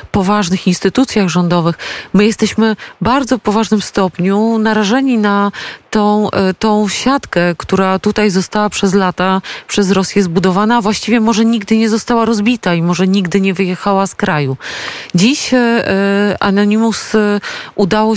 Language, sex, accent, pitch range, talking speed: Polish, female, native, 180-210 Hz, 125 wpm